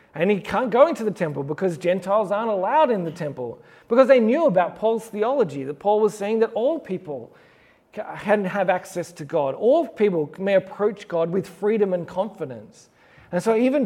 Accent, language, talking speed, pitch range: Australian, English, 190 wpm, 175-215 Hz